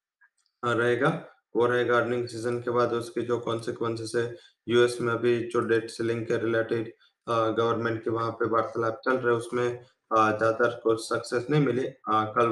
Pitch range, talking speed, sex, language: 115-130 Hz, 160 wpm, male, English